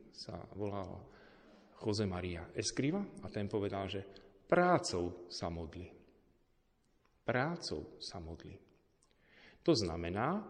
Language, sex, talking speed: Slovak, male, 95 wpm